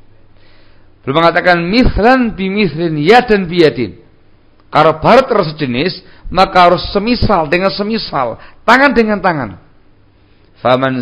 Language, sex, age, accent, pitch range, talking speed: Indonesian, male, 50-69, native, 115-160 Hz, 105 wpm